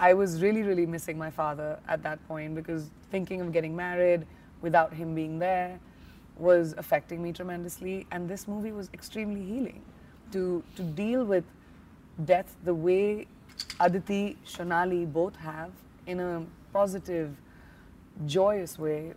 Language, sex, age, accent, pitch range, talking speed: English, female, 30-49, Indian, 165-190 Hz, 140 wpm